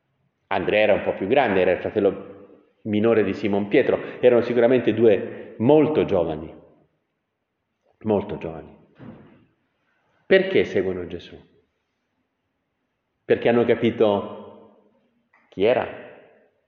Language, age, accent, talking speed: Italian, 40-59, native, 100 wpm